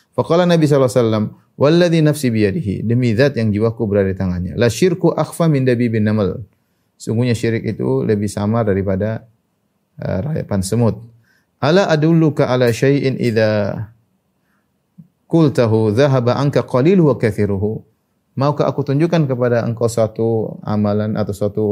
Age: 30-49